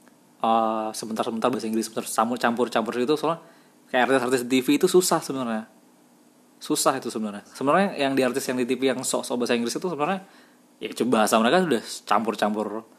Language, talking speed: Indonesian, 175 wpm